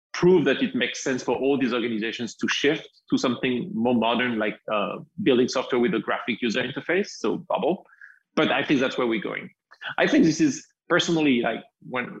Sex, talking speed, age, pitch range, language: male, 195 wpm, 30-49, 115-190 Hz, English